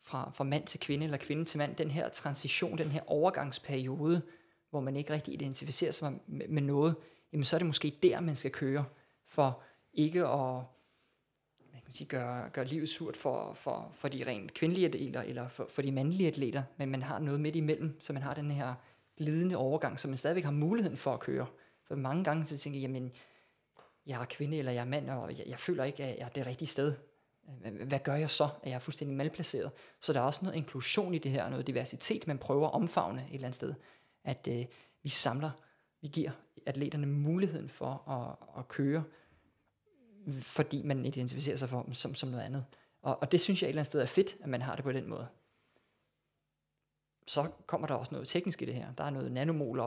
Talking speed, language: 220 wpm, Danish